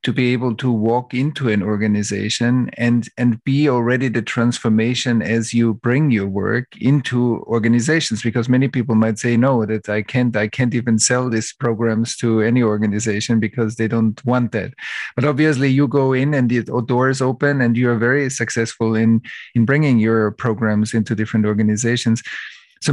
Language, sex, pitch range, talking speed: English, male, 115-135 Hz, 175 wpm